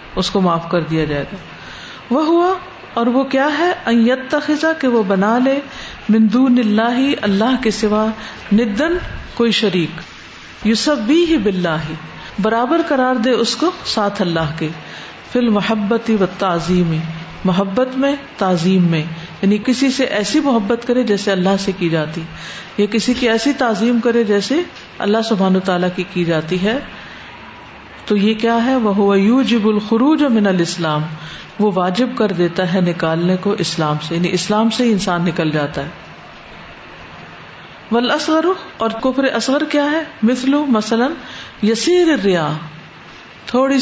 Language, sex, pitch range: Urdu, female, 180-250 Hz